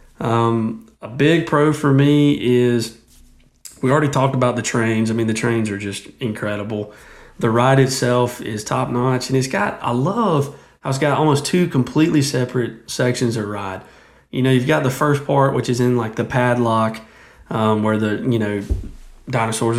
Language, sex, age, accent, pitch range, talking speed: English, male, 30-49, American, 110-130 Hz, 180 wpm